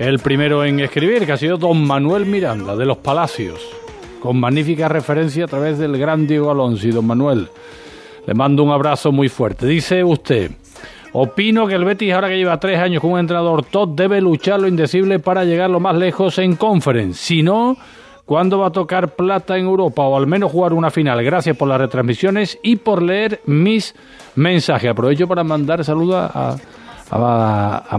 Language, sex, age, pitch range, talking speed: Spanish, male, 40-59, 135-180 Hz, 190 wpm